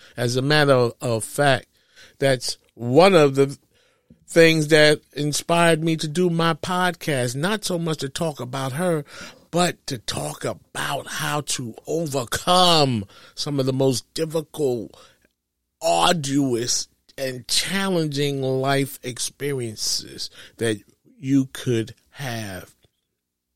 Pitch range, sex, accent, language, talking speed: 120-160 Hz, male, American, English, 115 wpm